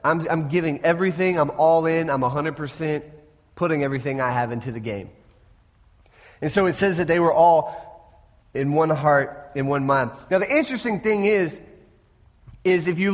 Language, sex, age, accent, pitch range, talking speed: English, male, 30-49, American, 165-220 Hz, 175 wpm